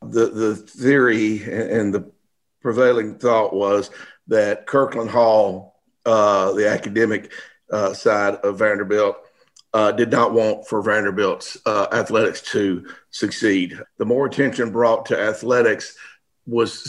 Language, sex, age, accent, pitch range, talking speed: English, male, 50-69, American, 105-145 Hz, 125 wpm